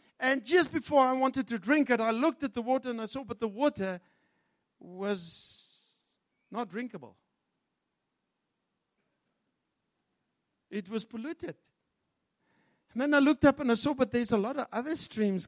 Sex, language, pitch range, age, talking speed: male, English, 180-255 Hz, 60-79, 155 wpm